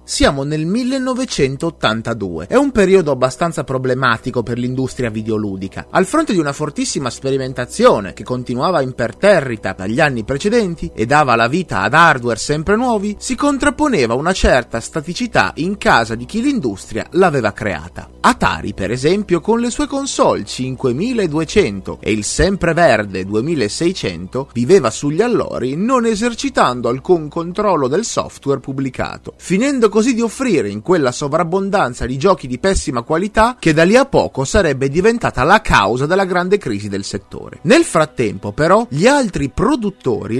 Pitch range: 120-200 Hz